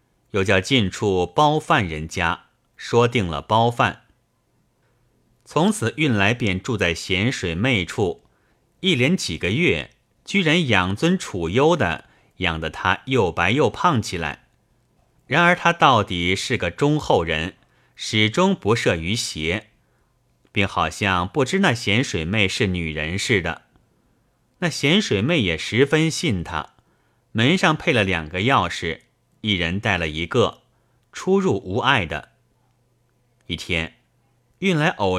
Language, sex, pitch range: Chinese, male, 95-130 Hz